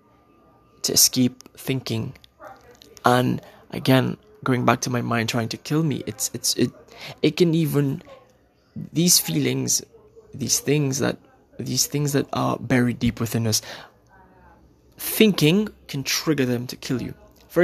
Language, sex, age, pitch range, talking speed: English, male, 20-39, 105-140 Hz, 135 wpm